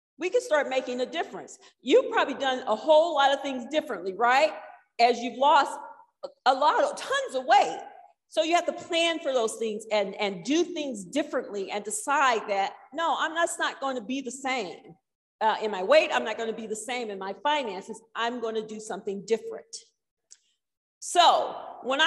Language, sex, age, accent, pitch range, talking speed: English, female, 50-69, American, 220-335 Hz, 195 wpm